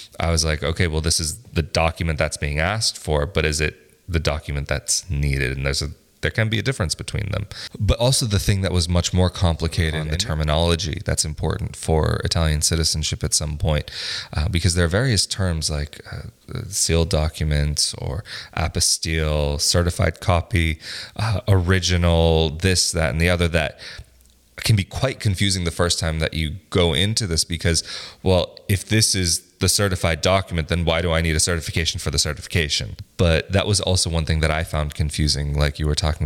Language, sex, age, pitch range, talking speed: English, male, 20-39, 75-95 Hz, 190 wpm